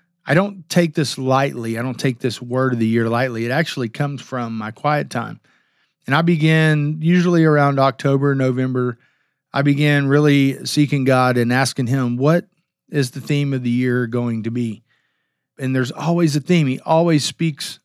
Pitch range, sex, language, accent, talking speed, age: 125-155 Hz, male, English, American, 180 wpm, 40-59